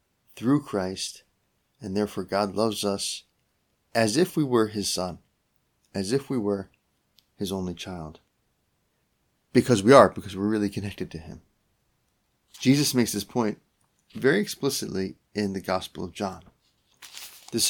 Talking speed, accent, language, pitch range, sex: 140 wpm, American, English, 95-120 Hz, male